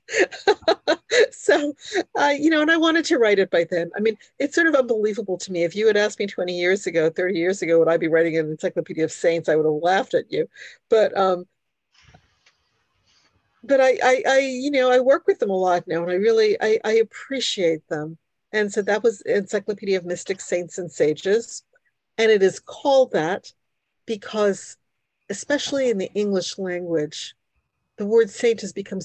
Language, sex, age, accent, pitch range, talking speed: English, female, 50-69, American, 180-270 Hz, 190 wpm